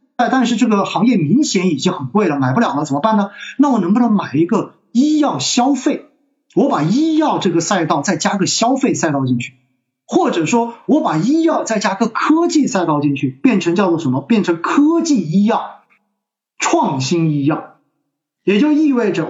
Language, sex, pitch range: Chinese, male, 140-235 Hz